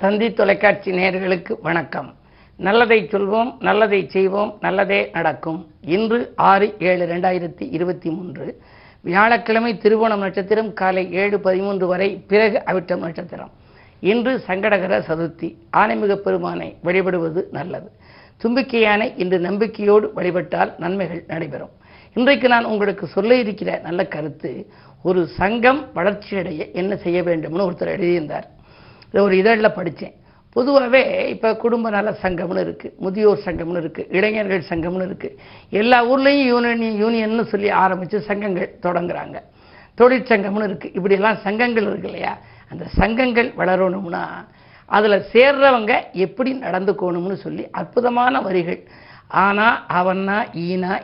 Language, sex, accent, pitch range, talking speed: Tamil, female, native, 180-220 Hz, 110 wpm